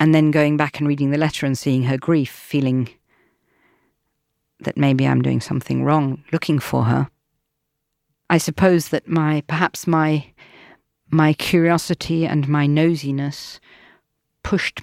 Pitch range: 140-165 Hz